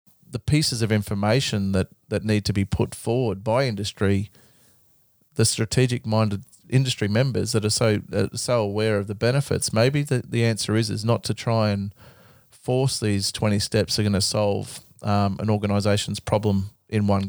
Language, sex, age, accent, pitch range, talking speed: English, male, 30-49, Australian, 100-120 Hz, 175 wpm